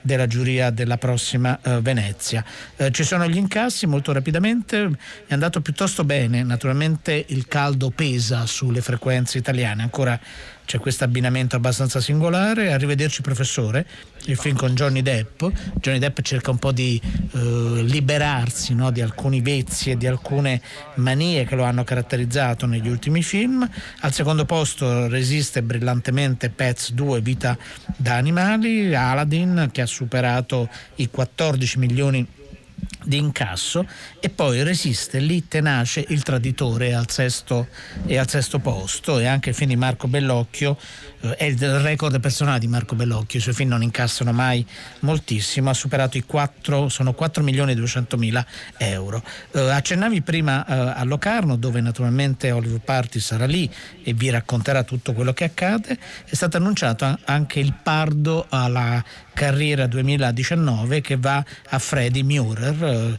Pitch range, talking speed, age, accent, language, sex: 125-145 Hz, 145 wpm, 50-69, native, Italian, male